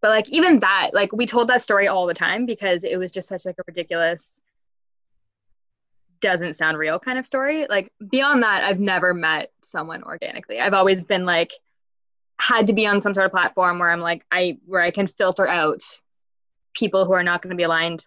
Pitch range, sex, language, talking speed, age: 180-250 Hz, female, English, 210 wpm, 10-29